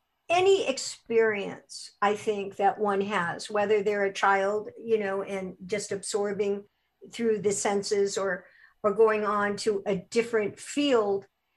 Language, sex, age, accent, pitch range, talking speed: English, male, 50-69, American, 205-260 Hz, 140 wpm